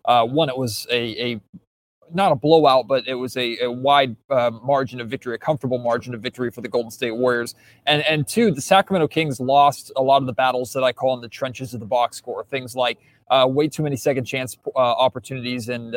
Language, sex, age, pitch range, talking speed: English, male, 20-39, 125-145 Hz, 230 wpm